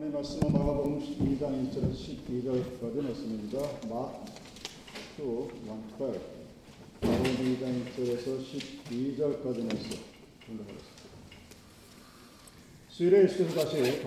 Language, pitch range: Korean, 125-150 Hz